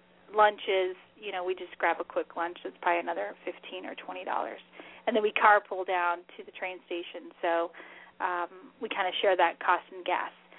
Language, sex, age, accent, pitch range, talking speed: English, female, 30-49, American, 185-240 Hz, 200 wpm